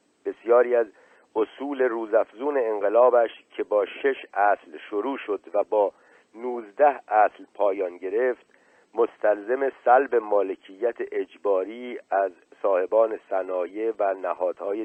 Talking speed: 105 wpm